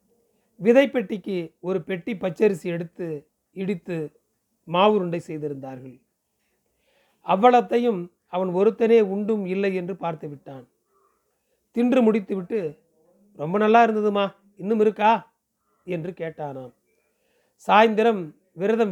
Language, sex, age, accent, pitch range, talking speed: Tamil, male, 40-59, native, 170-210 Hz, 90 wpm